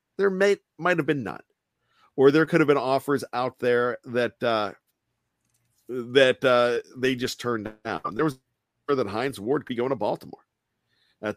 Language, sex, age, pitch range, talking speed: English, male, 50-69, 115-140 Hz, 170 wpm